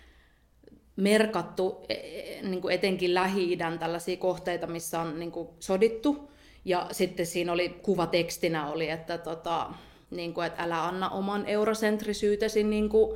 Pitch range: 170-200 Hz